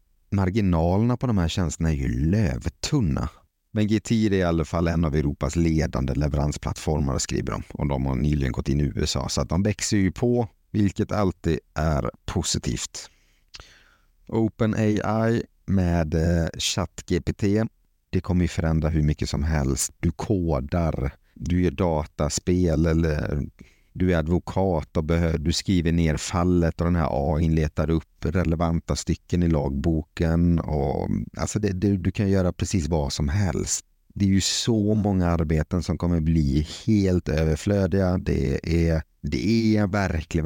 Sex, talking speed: male, 155 wpm